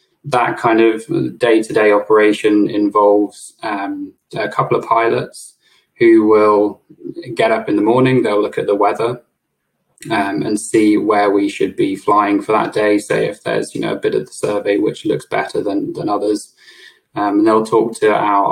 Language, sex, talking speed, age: English, male, 180 wpm, 20-39